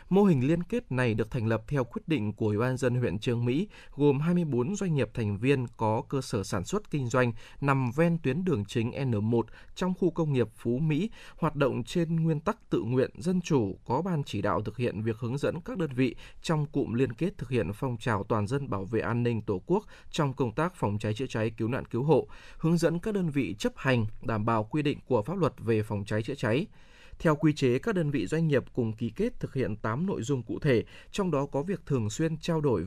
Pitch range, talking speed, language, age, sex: 115-155 Hz, 250 wpm, Vietnamese, 20-39, male